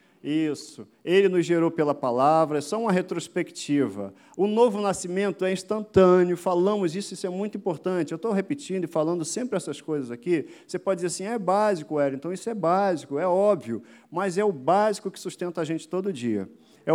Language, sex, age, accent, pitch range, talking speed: Portuguese, male, 50-69, Brazilian, 160-200 Hz, 190 wpm